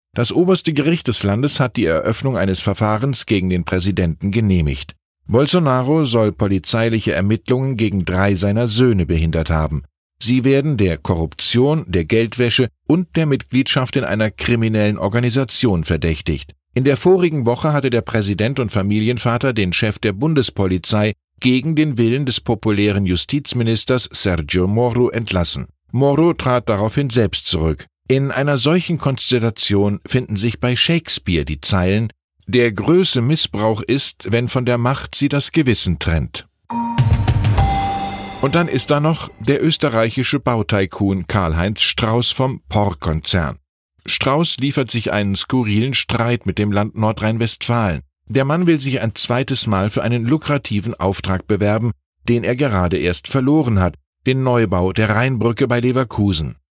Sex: male